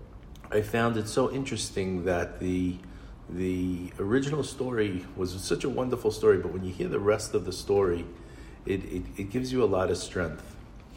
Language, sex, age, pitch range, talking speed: English, male, 40-59, 90-100 Hz, 180 wpm